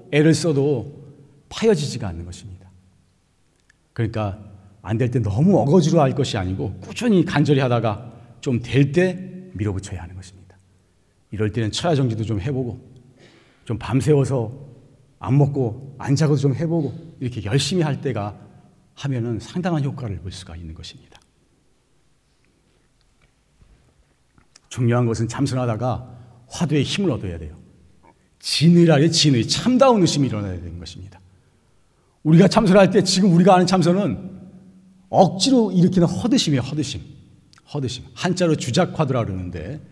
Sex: male